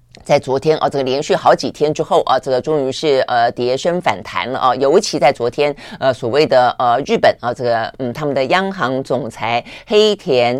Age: 30-49